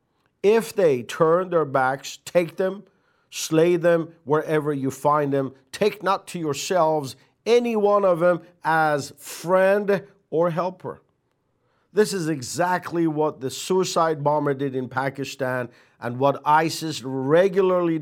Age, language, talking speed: 50-69, English, 130 wpm